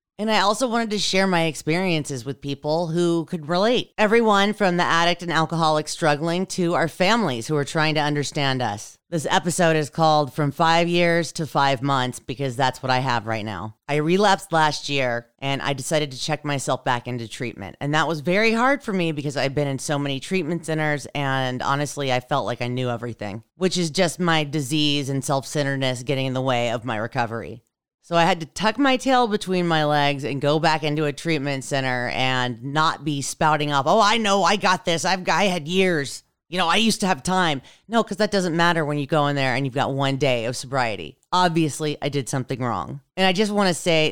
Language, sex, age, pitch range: English, female, 30-49, 135-170 Hz